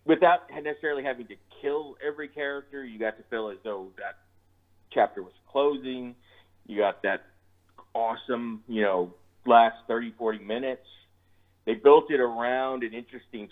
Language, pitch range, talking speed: English, 100-130 Hz, 145 wpm